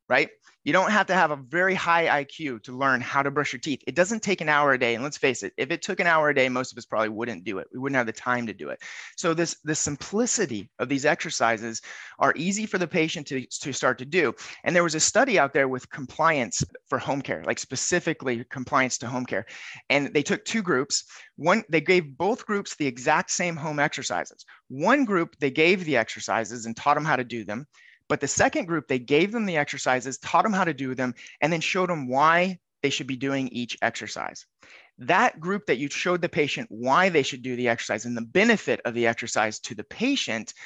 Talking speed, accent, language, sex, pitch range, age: 240 wpm, American, English, male, 130-175 Hz, 30-49